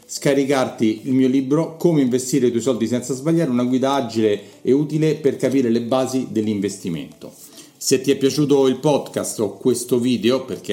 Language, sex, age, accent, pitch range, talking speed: Italian, male, 40-59, native, 115-145 Hz, 175 wpm